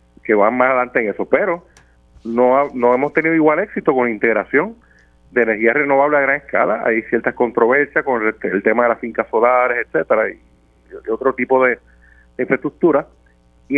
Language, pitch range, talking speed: Spanish, 105-150 Hz, 185 wpm